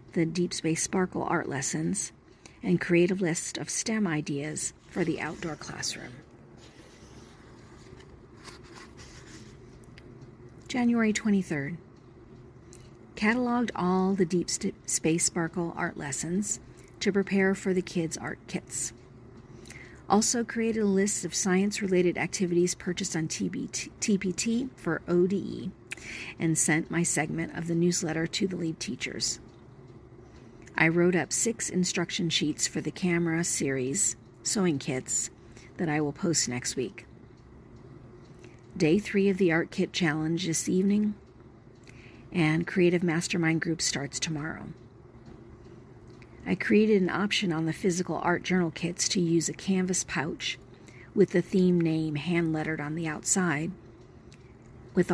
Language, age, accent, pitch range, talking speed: English, 50-69, American, 125-180 Hz, 125 wpm